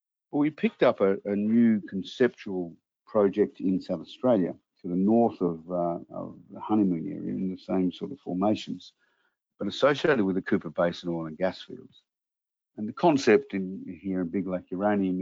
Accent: Australian